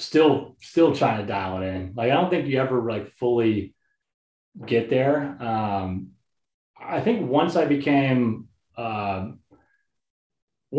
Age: 30-49